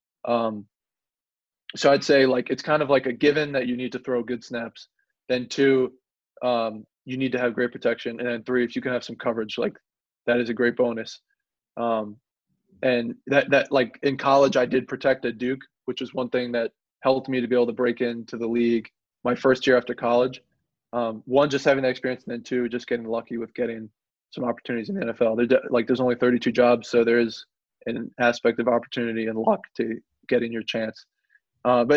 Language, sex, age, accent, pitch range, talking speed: English, male, 20-39, American, 120-130 Hz, 210 wpm